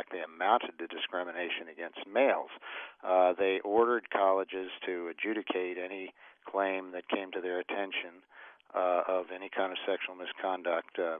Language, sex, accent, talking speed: English, male, American, 145 wpm